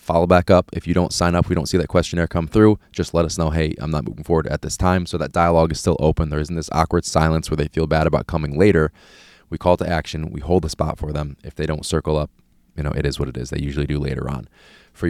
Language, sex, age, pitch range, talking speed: English, male, 20-39, 75-95 Hz, 290 wpm